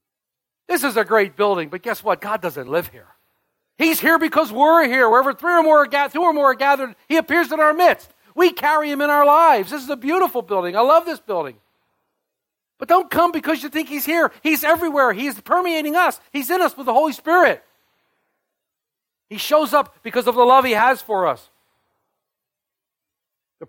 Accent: American